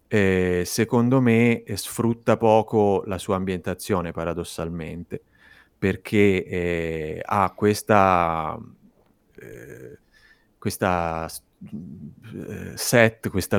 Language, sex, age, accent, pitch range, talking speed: Italian, male, 30-49, native, 85-100 Hz, 85 wpm